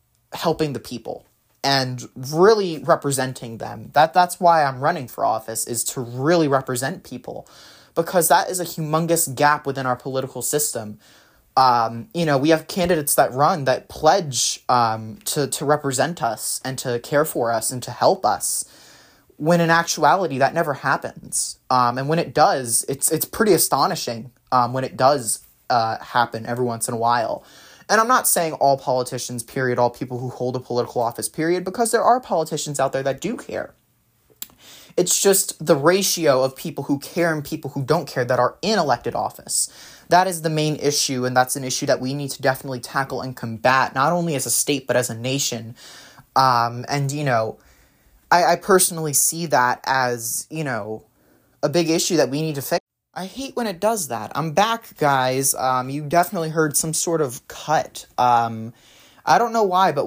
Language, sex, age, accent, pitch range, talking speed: English, male, 20-39, American, 125-165 Hz, 190 wpm